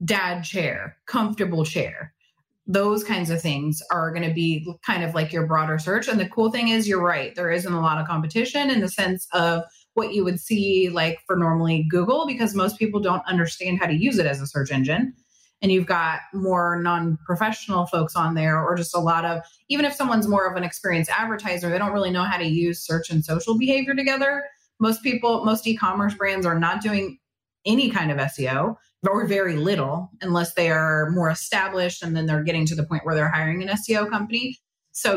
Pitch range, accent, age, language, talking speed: 165-220 Hz, American, 30-49, English, 210 wpm